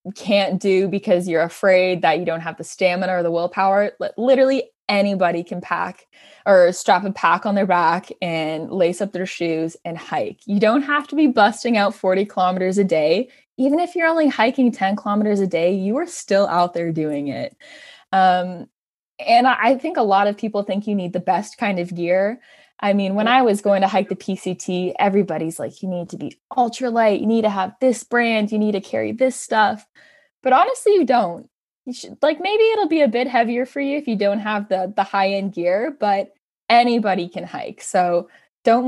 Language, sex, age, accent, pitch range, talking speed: English, female, 20-39, American, 180-235 Hz, 205 wpm